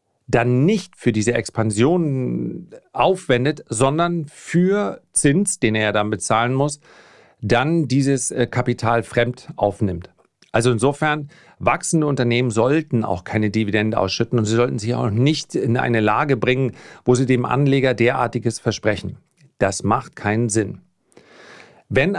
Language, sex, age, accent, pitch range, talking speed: German, male, 40-59, German, 110-140 Hz, 135 wpm